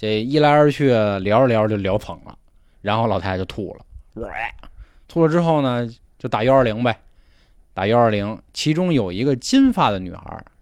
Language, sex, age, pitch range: Chinese, male, 20-39, 95-130 Hz